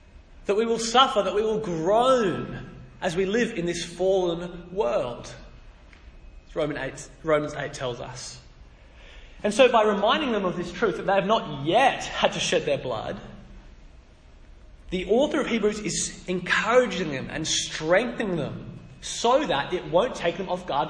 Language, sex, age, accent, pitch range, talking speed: English, male, 20-39, Australian, 150-200 Hz, 160 wpm